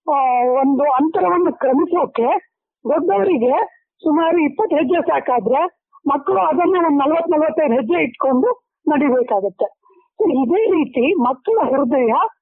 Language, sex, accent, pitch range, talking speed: Kannada, female, native, 275-355 Hz, 100 wpm